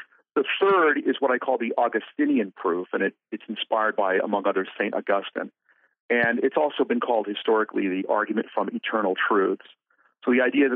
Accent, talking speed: American, 175 wpm